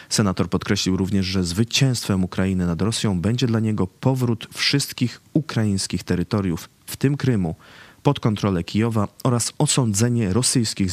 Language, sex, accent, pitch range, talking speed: Polish, male, native, 95-120 Hz, 130 wpm